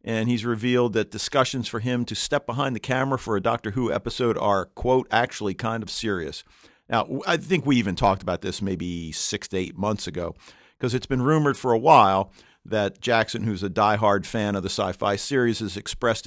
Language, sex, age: English, male, 50-69